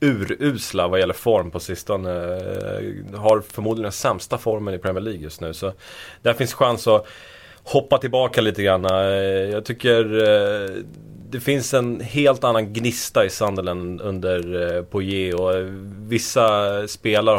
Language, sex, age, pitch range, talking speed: Swedish, male, 30-49, 95-110 Hz, 140 wpm